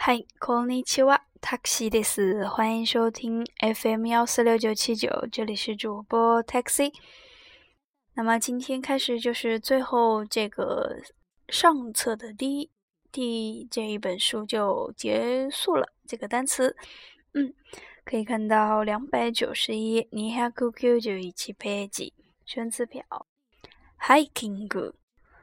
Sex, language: female, Chinese